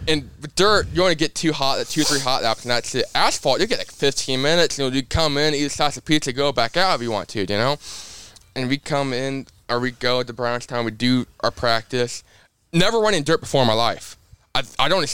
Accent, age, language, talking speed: American, 20-39, English, 270 wpm